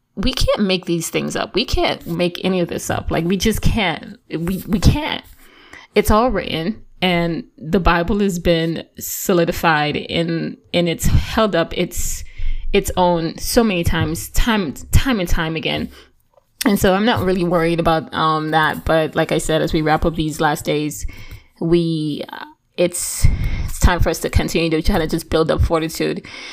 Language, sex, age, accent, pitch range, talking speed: English, female, 20-39, American, 165-190 Hz, 185 wpm